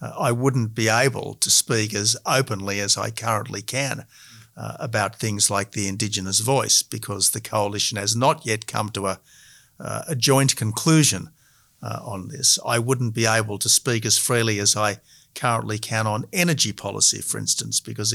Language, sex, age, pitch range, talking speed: English, male, 50-69, 110-130 Hz, 175 wpm